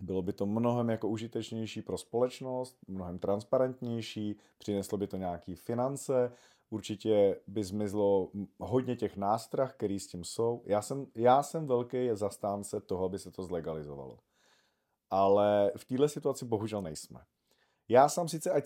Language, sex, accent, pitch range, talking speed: Czech, male, native, 95-125 Hz, 145 wpm